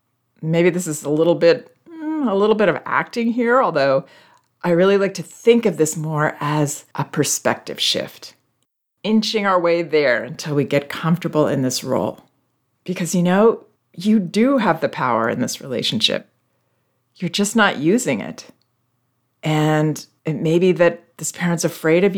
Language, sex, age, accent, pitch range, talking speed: English, female, 40-59, American, 155-205 Hz, 165 wpm